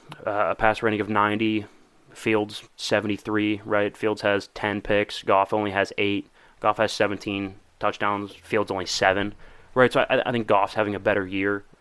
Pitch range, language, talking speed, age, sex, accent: 100-115 Hz, English, 175 wpm, 20-39, male, American